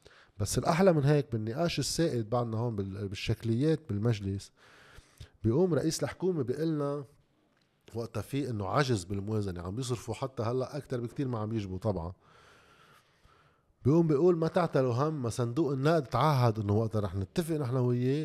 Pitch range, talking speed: 110-150 Hz, 150 wpm